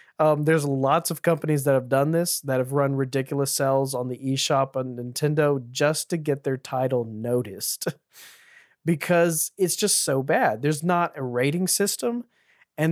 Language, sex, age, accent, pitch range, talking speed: English, male, 20-39, American, 135-170 Hz, 165 wpm